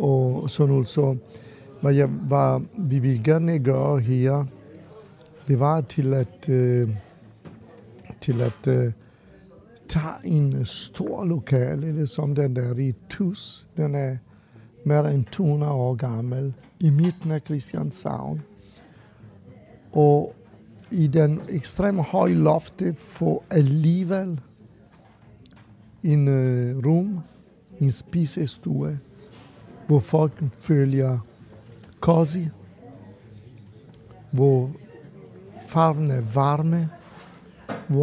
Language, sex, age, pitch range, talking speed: Danish, male, 60-79, 125-160 Hz, 80 wpm